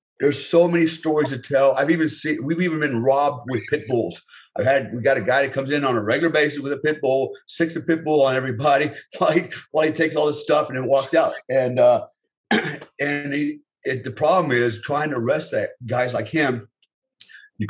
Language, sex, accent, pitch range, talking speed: English, male, American, 110-135 Hz, 225 wpm